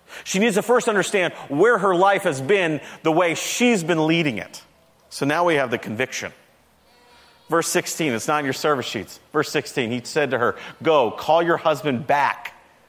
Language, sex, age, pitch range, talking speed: English, male, 40-59, 135-200 Hz, 190 wpm